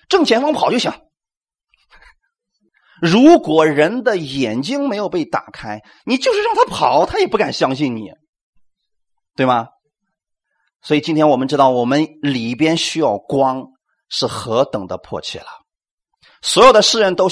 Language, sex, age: Chinese, male, 30-49